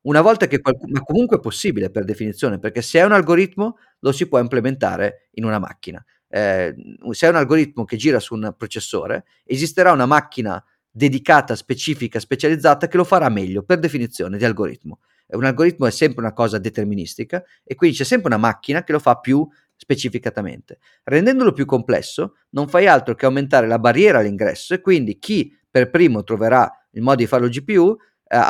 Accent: native